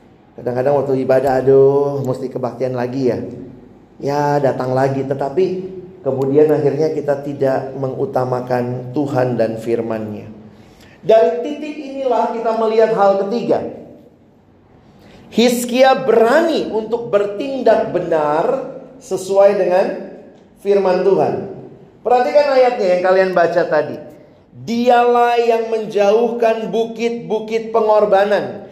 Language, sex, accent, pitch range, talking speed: Indonesian, male, native, 150-240 Hz, 100 wpm